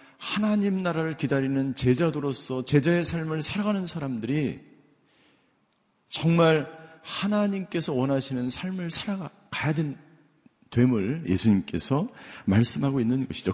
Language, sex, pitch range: Korean, male, 125-170 Hz